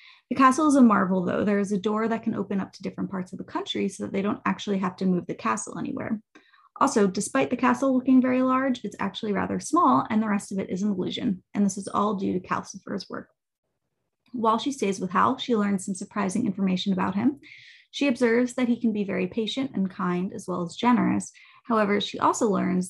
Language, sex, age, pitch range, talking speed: English, female, 20-39, 190-245 Hz, 230 wpm